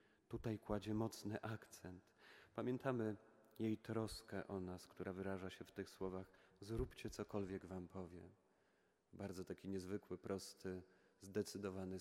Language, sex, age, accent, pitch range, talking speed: Polish, male, 40-59, native, 95-110 Hz, 120 wpm